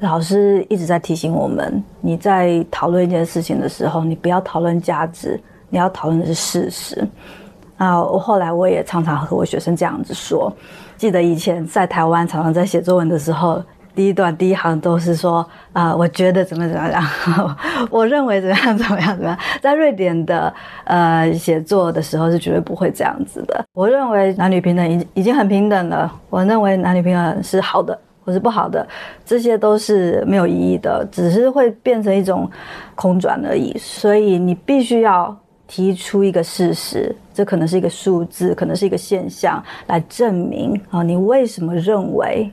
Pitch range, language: 170-200 Hz, Chinese